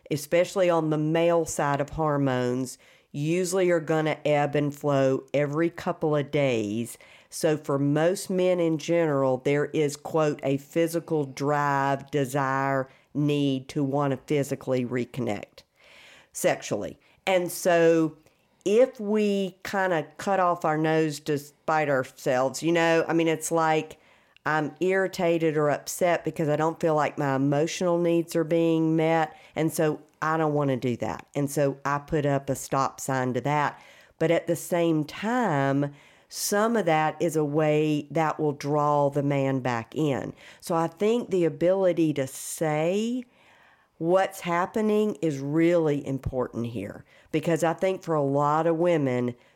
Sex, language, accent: female, English, American